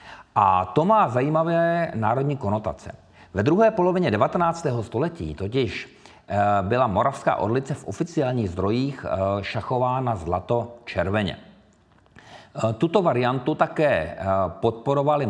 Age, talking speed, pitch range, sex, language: 50-69, 95 wpm, 100-140 Hz, male, Czech